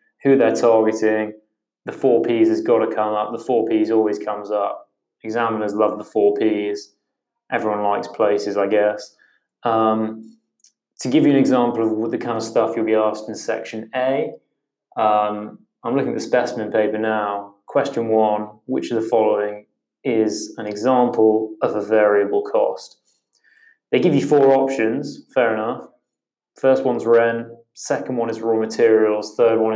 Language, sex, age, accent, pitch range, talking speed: English, male, 20-39, British, 105-135 Hz, 165 wpm